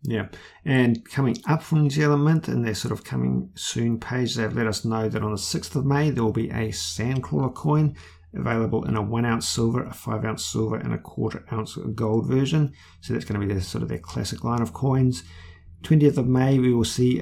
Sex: male